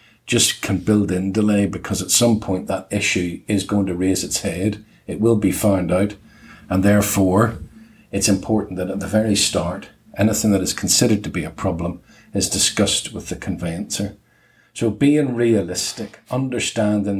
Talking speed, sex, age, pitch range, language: 170 wpm, male, 50-69, 95-110 Hz, English